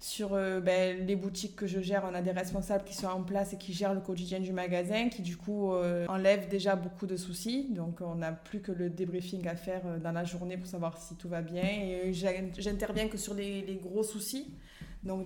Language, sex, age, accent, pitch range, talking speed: French, female, 20-39, French, 180-210 Hz, 230 wpm